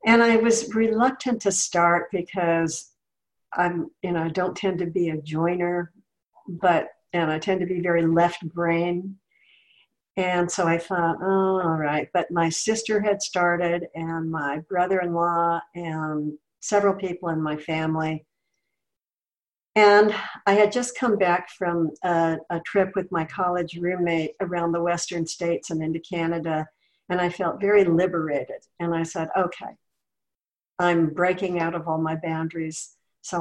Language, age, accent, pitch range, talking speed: English, 60-79, American, 165-190 Hz, 155 wpm